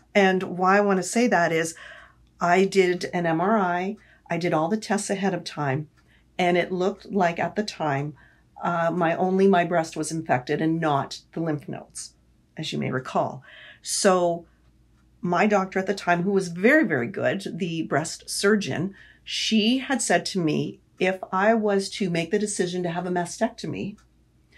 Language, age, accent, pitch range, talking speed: English, 50-69, American, 165-200 Hz, 180 wpm